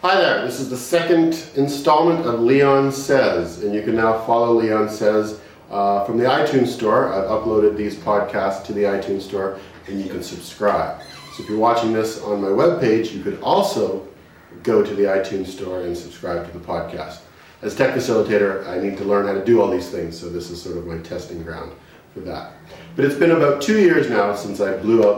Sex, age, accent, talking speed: male, 40-59, American, 210 wpm